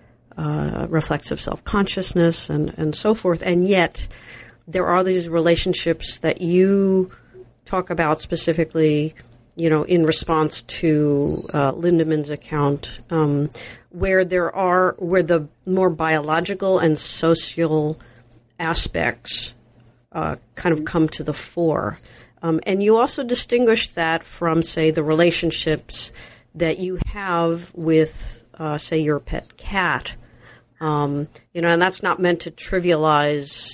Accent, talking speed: American, 130 wpm